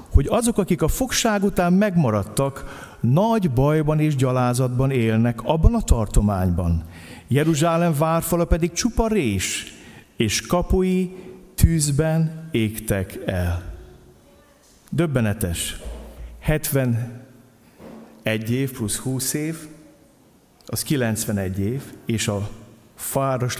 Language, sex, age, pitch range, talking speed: Hungarian, male, 50-69, 100-150 Hz, 95 wpm